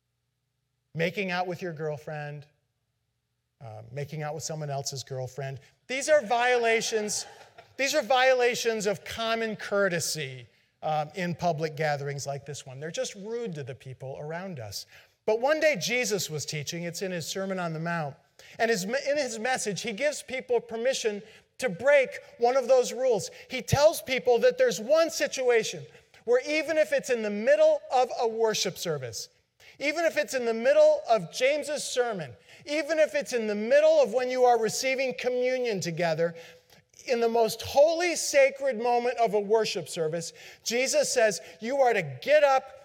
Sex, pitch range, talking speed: male, 165-260 Hz, 170 wpm